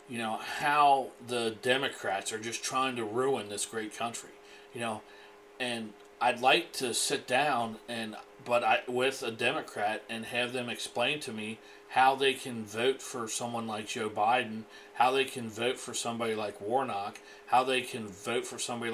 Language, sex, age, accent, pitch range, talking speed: English, male, 40-59, American, 105-125 Hz, 175 wpm